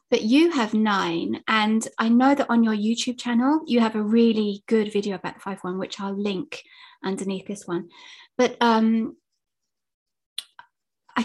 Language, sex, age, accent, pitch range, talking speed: English, female, 20-39, British, 205-250 Hz, 155 wpm